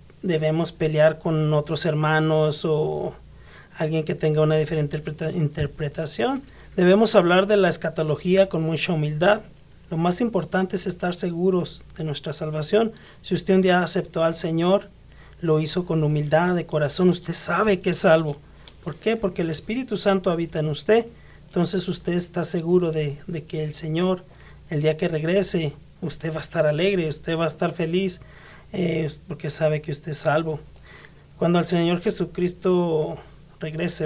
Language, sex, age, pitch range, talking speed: English, male, 40-59, 155-180 Hz, 160 wpm